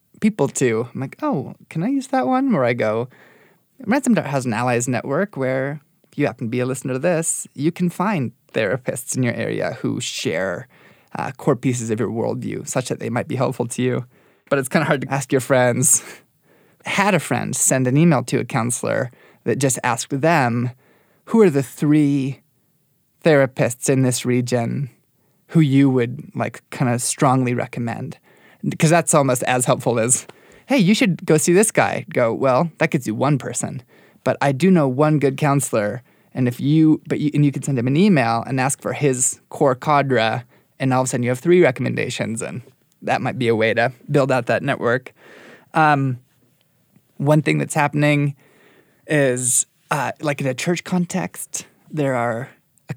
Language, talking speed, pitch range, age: English, 190 wpm, 125-160 Hz, 20-39